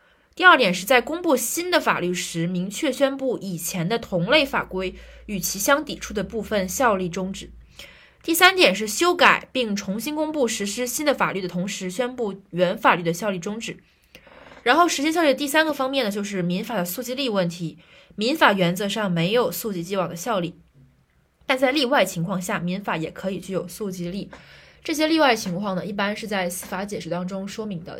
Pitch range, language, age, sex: 180-240 Hz, Chinese, 20-39, female